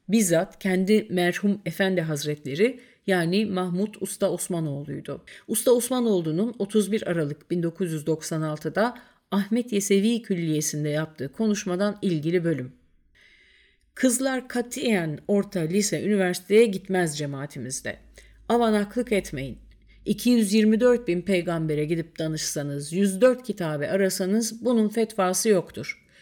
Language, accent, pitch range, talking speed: Turkish, native, 160-225 Hz, 95 wpm